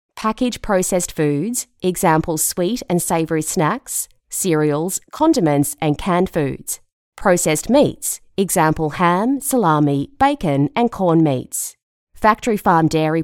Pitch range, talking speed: 155-235 Hz, 115 wpm